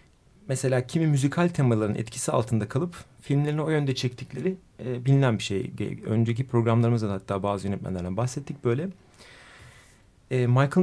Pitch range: 120-165 Hz